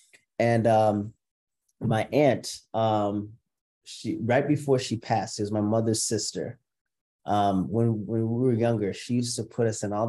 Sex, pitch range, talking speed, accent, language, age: male, 105-120 Hz, 160 wpm, American, English, 30-49